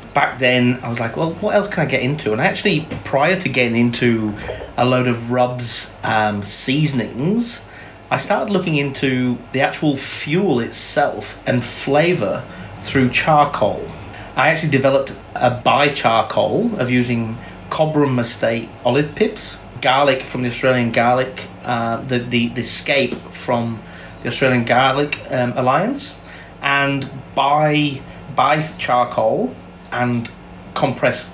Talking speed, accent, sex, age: 135 wpm, British, male, 30-49